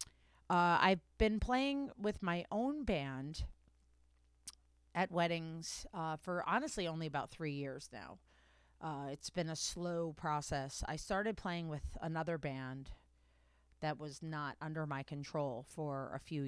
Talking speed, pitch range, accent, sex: 140 wpm, 130-175 Hz, American, female